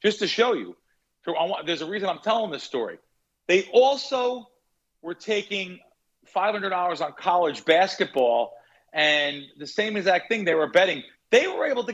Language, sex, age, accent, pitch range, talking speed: English, male, 40-59, American, 150-215 Hz, 155 wpm